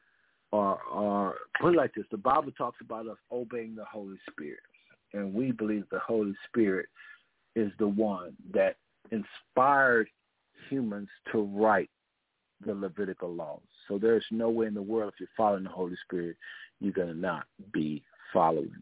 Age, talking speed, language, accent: 50-69, 165 wpm, English, American